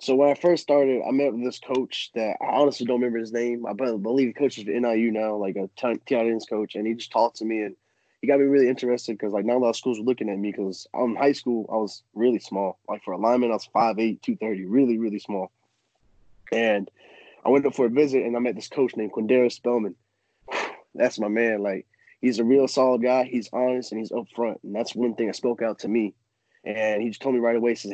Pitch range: 110-130 Hz